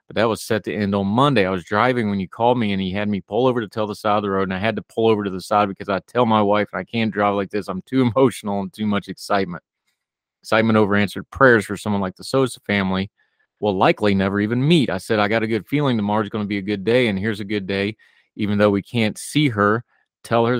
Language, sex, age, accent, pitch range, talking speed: English, male, 30-49, American, 95-110 Hz, 280 wpm